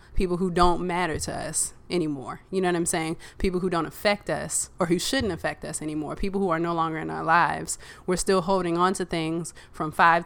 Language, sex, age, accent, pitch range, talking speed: English, female, 20-39, American, 160-205 Hz, 230 wpm